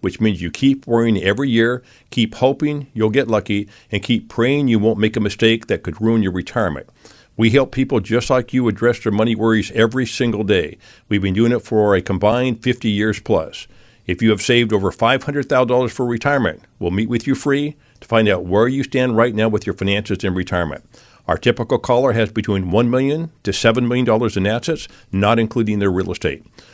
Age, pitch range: 50-69, 100-125 Hz